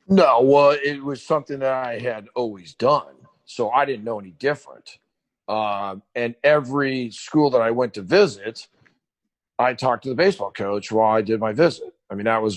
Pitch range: 105-140 Hz